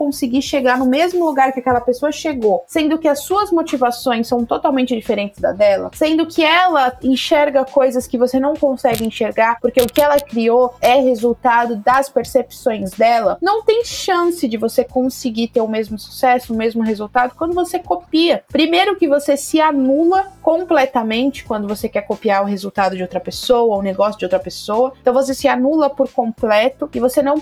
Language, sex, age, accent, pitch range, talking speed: Portuguese, female, 20-39, Brazilian, 245-305 Hz, 185 wpm